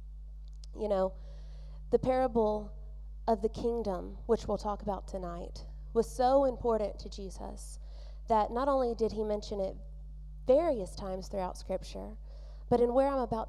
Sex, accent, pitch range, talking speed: female, American, 150-235 Hz, 145 wpm